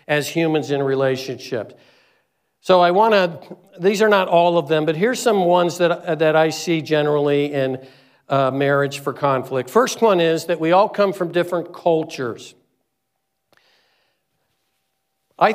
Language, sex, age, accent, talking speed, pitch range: English, male, 50-69, American, 145 wpm, 155-195 Hz